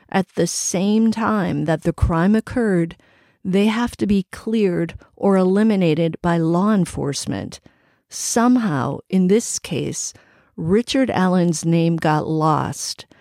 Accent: American